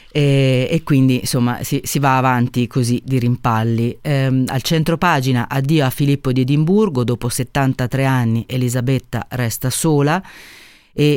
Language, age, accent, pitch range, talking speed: Italian, 30-49, native, 115-140 Hz, 145 wpm